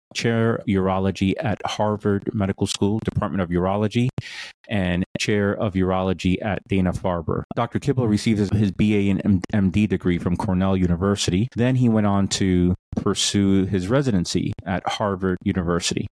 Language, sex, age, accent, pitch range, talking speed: English, male, 30-49, American, 90-110 Hz, 140 wpm